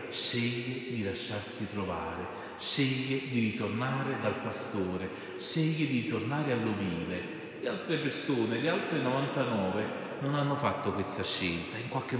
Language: Italian